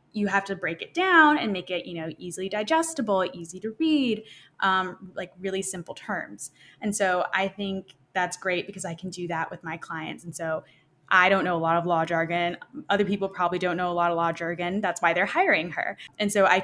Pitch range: 175-230 Hz